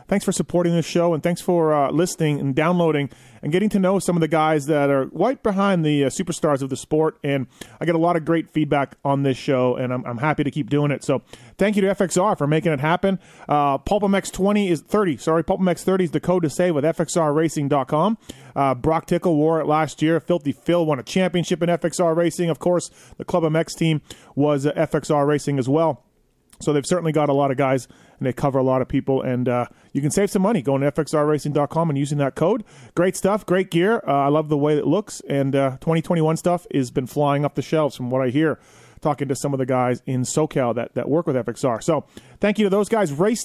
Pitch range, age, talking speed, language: 140-175 Hz, 30-49, 240 wpm, English